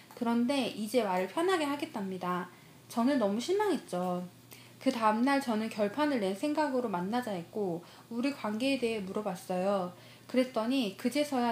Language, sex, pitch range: Korean, female, 195-275 Hz